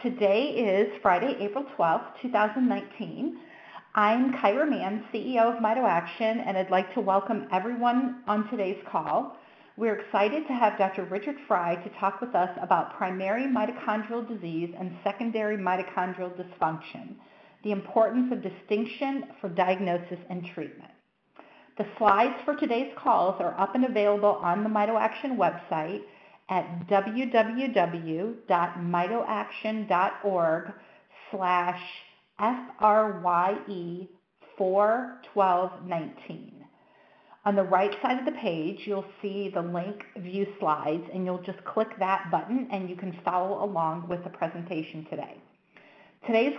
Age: 50-69